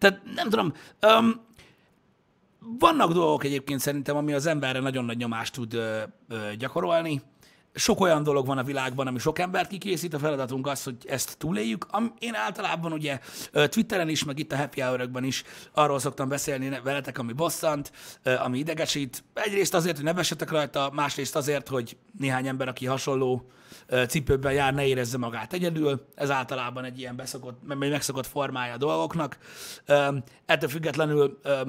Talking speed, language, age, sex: 155 wpm, Hungarian, 30-49, male